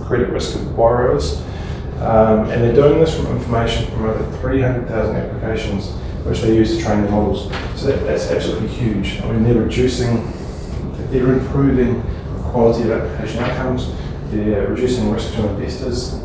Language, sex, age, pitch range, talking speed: English, male, 20-39, 90-115 Hz, 155 wpm